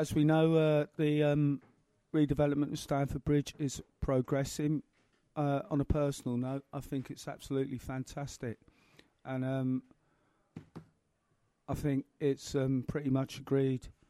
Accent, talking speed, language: British, 130 wpm, English